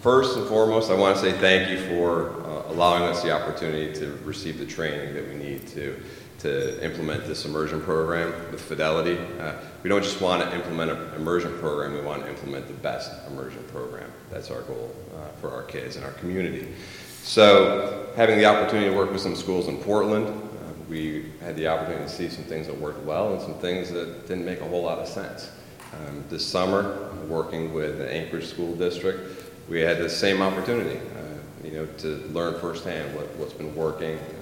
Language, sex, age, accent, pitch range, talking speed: English, male, 40-59, American, 75-90 Hz, 195 wpm